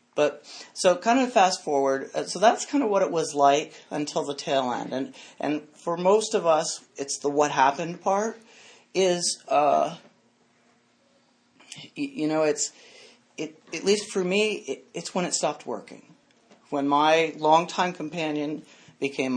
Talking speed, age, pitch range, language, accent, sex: 155 wpm, 40-59, 140-170 Hz, English, American, male